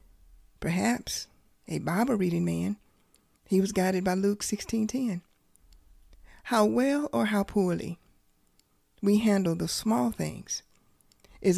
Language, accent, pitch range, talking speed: English, American, 165-210 Hz, 110 wpm